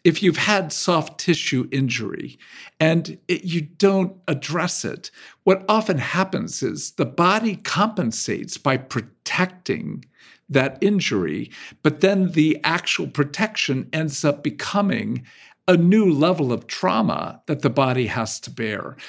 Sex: male